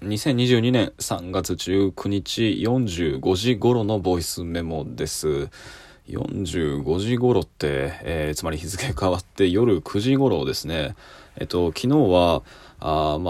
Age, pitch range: 20-39, 90-125 Hz